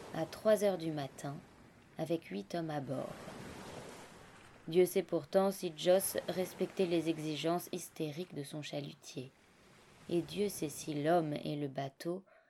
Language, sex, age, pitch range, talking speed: French, female, 20-39, 145-180 Hz, 145 wpm